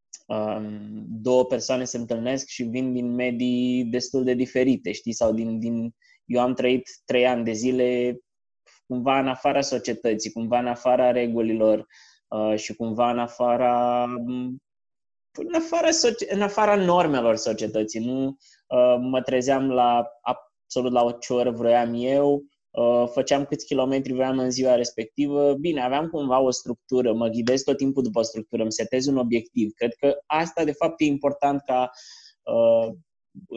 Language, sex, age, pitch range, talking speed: Romanian, male, 20-39, 115-140 Hz, 145 wpm